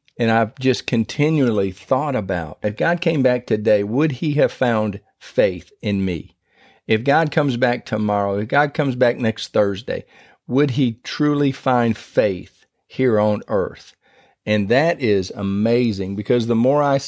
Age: 50-69